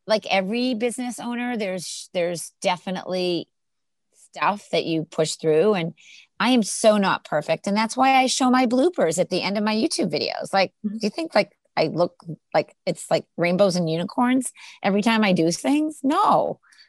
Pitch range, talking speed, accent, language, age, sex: 160-220 Hz, 180 wpm, American, English, 30-49, female